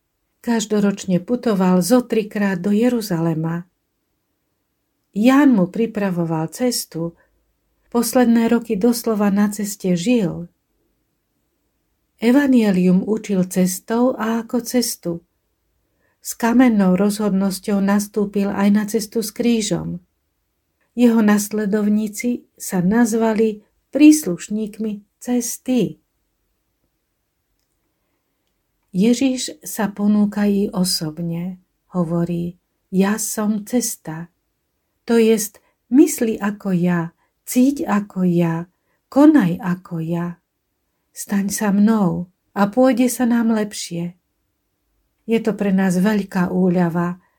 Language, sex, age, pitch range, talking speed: Slovak, female, 50-69, 175-230 Hz, 90 wpm